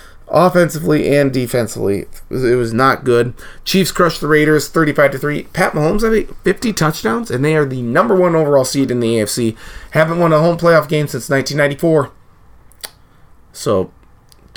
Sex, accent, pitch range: male, American, 120-160 Hz